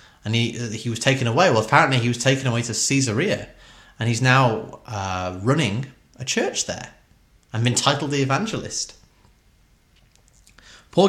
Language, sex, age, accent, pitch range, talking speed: English, male, 30-49, British, 105-135 Hz, 150 wpm